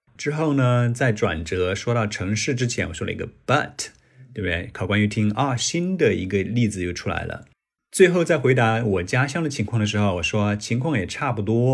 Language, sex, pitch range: Chinese, male, 95-125 Hz